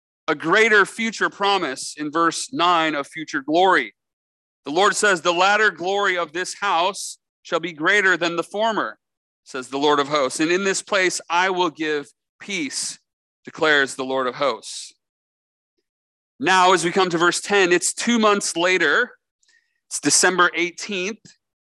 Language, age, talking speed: English, 40-59, 160 wpm